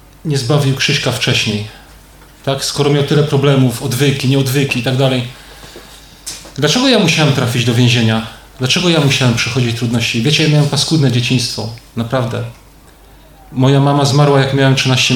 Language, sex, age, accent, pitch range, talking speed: Polish, male, 40-59, native, 120-150 Hz, 145 wpm